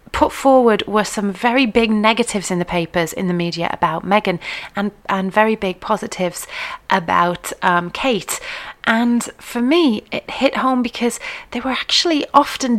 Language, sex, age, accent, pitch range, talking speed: English, female, 30-49, British, 200-255 Hz, 160 wpm